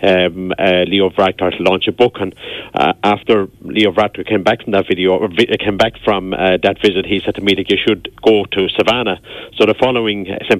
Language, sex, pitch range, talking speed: English, male, 95-105 Hz, 225 wpm